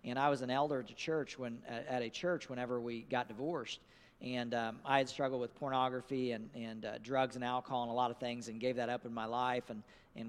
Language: English